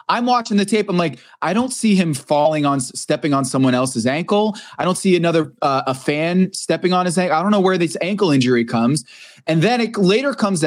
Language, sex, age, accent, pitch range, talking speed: English, male, 20-39, American, 155-215 Hz, 230 wpm